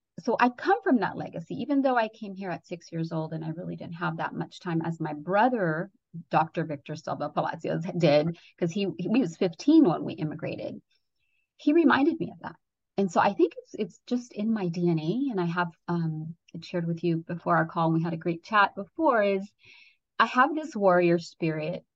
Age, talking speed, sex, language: 30-49, 215 wpm, female, English